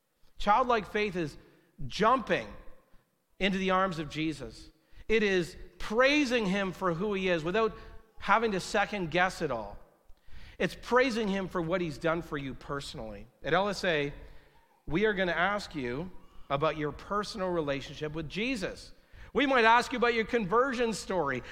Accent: American